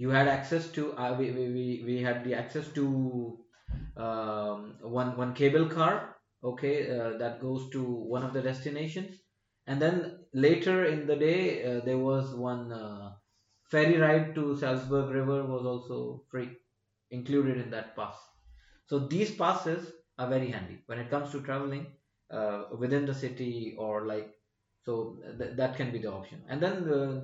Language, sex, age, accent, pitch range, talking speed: English, male, 20-39, Indian, 115-145 Hz, 165 wpm